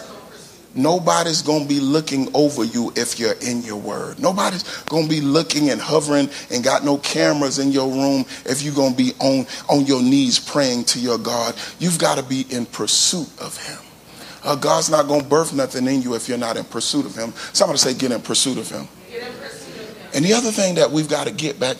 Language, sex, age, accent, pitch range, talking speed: English, male, 40-59, American, 130-180 Hz, 210 wpm